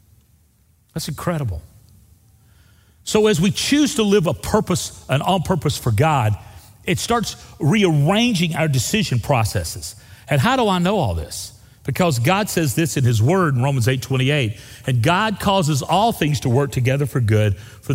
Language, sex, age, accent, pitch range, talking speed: English, male, 40-59, American, 105-145 Hz, 170 wpm